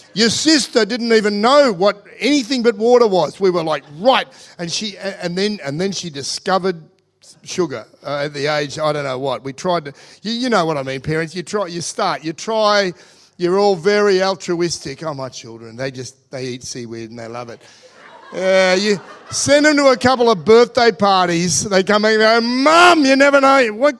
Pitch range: 145-220 Hz